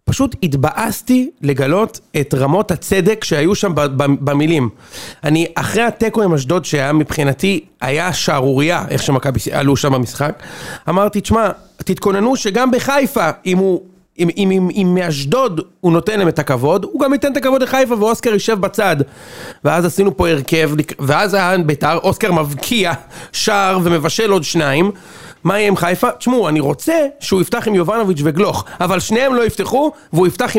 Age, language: 40-59, Hebrew